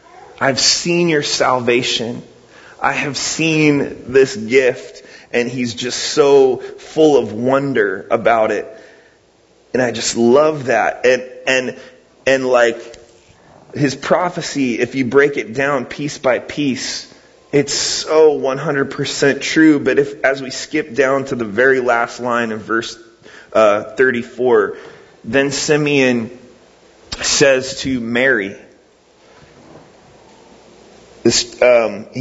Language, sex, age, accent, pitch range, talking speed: English, male, 30-49, American, 120-145 Hz, 115 wpm